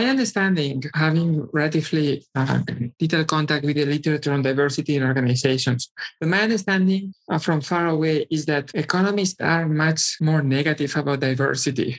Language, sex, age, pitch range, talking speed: English, male, 50-69, 140-180 Hz, 145 wpm